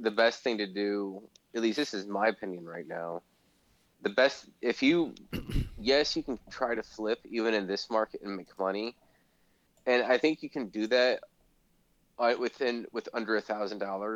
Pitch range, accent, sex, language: 100-120 Hz, American, male, English